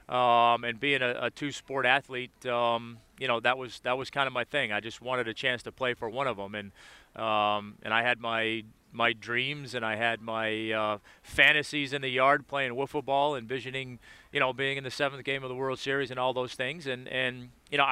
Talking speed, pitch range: 230 wpm, 115-135 Hz